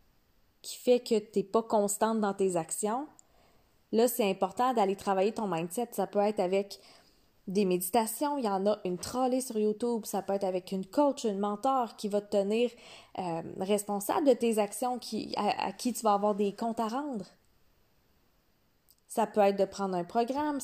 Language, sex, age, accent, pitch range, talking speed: French, female, 20-39, Canadian, 190-235 Hz, 190 wpm